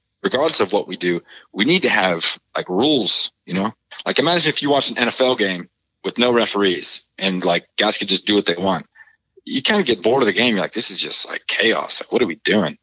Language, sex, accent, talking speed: English, male, American, 250 wpm